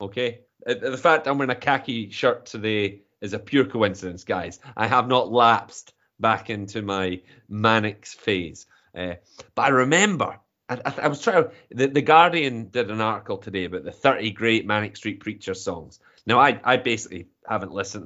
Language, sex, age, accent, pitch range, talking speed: English, male, 30-49, British, 100-130 Hz, 175 wpm